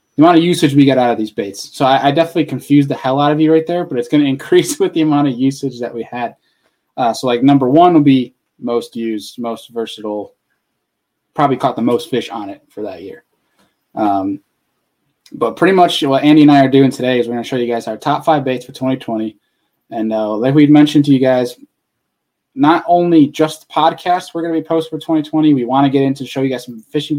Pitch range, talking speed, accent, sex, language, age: 125-155 Hz, 240 wpm, American, male, English, 10-29